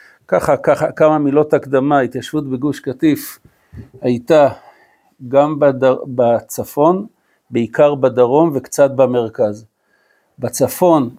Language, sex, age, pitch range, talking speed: Hebrew, male, 60-79, 125-150 Hz, 90 wpm